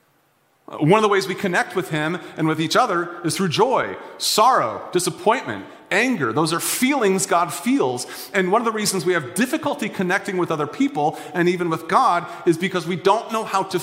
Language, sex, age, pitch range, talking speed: English, male, 30-49, 175-225 Hz, 200 wpm